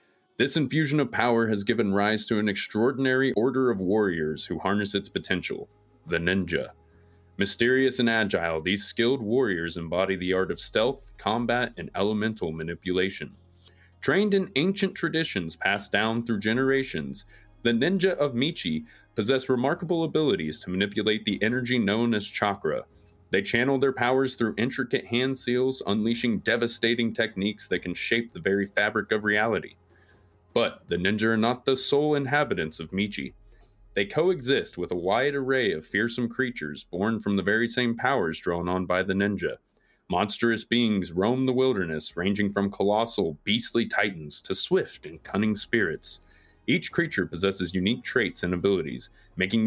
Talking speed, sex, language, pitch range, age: 155 wpm, male, English, 95-130 Hz, 30-49